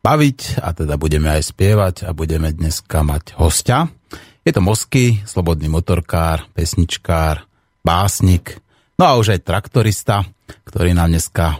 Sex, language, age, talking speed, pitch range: male, Slovak, 30-49, 135 wpm, 85-100 Hz